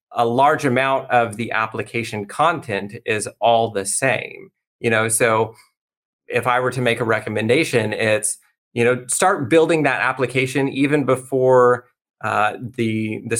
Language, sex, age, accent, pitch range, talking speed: English, male, 30-49, American, 110-125 Hz, 150 wpm